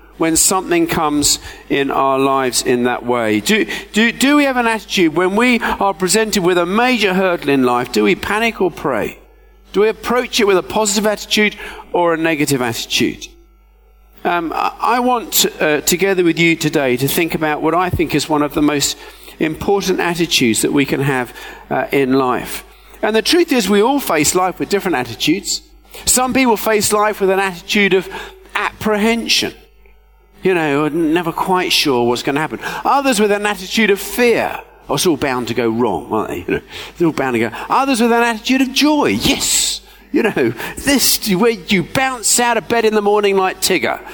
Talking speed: 195 wpm